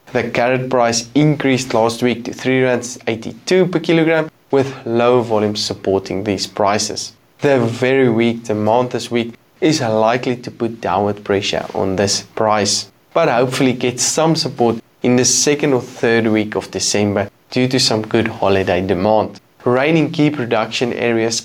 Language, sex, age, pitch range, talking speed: English, male, 20-39, 110-130 Hz, 150 wpm